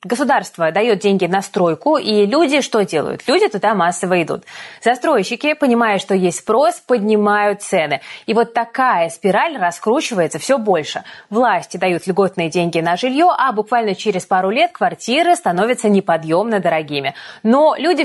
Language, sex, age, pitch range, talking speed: Russian, female, 20-39, 185-255 Hz, 145 wpm